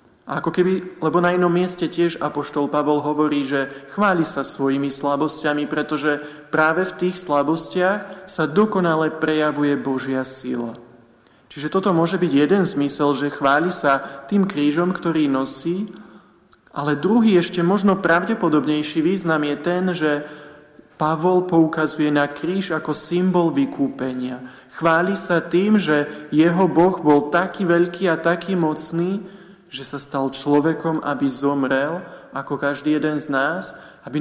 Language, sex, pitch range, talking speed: Slovak, male, 140-175 Hz, 135 wpm